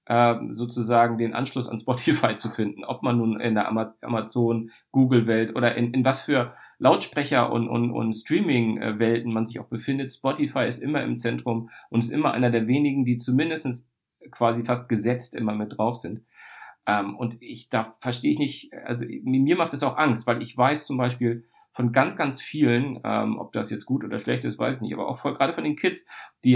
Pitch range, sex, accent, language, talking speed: 110-130 Hz, male, German, German, 195 wpm